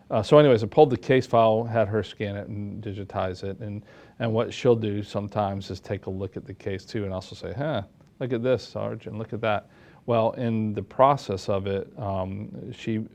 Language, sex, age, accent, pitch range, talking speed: English, male, 40-59, American, 95-110 Hz, 220 wpm